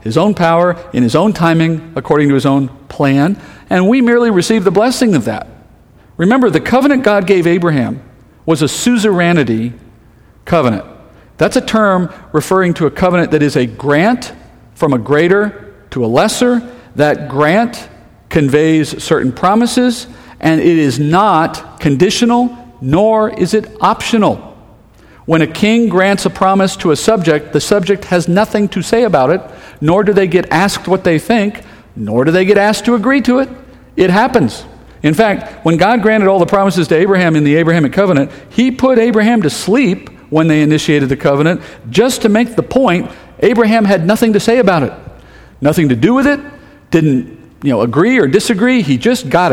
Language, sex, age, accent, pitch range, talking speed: English, male, 50-69, American, 150-220 Hz, 180 wpm